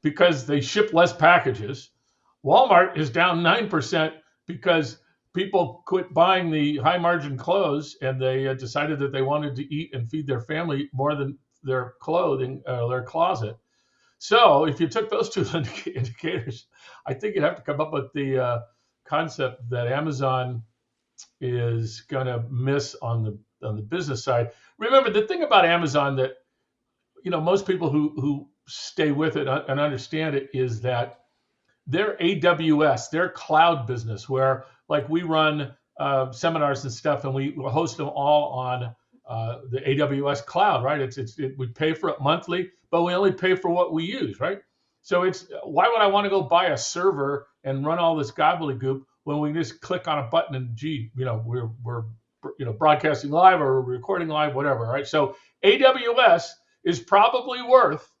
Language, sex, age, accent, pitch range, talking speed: English, male, 60-79, American, 130-170 Hz, 175 wpm